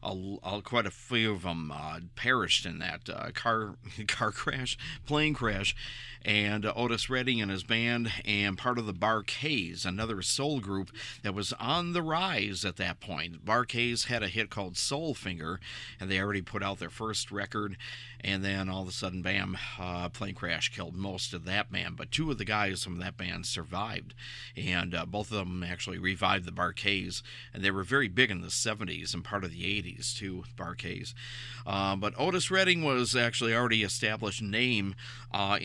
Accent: American